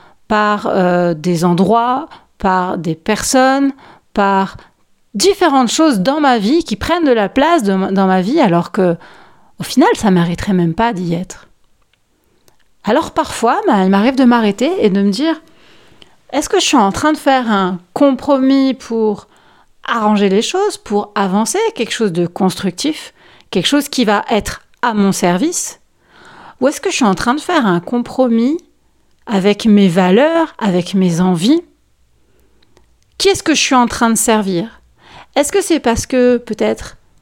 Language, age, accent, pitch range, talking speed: French, 40-59, French, 195-275 Hz, 165 wpm